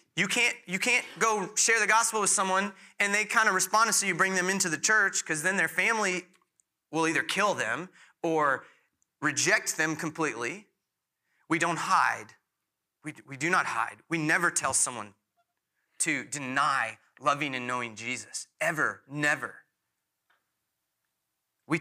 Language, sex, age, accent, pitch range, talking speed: English, male, 30-49, American, 135-195 Hz, 150 wpm